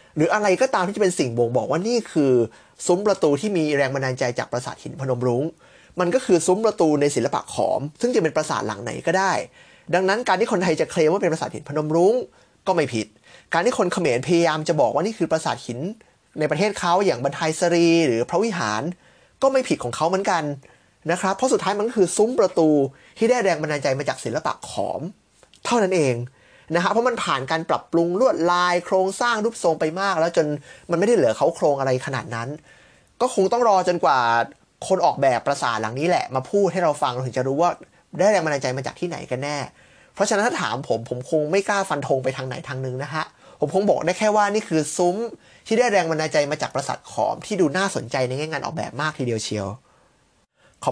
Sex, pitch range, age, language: male, 135-185 Hz, 20-39, Thai